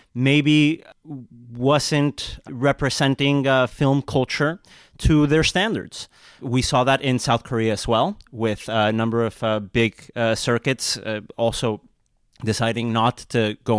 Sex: male